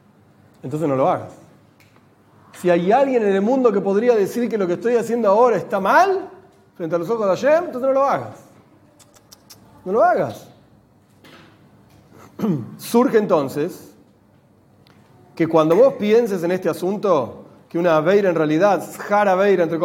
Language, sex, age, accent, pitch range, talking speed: Spanish, male, 40-59, Argentinian, 155-220 Hz, 150 wpm